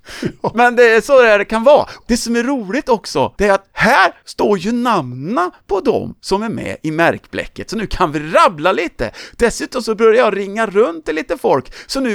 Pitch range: 185-245 Hz